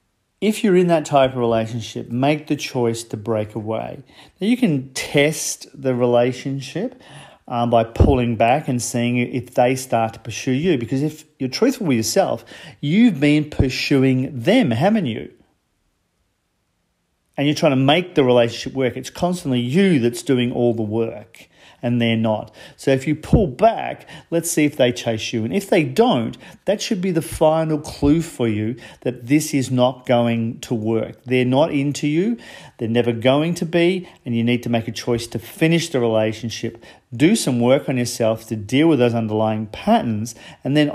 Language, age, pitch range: English, 40-59, 115-150 Hz